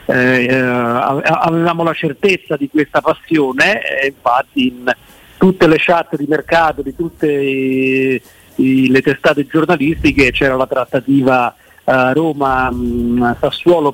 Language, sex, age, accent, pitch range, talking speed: Italian, male, 50-69, native, 135-165 Hz, 115 wpm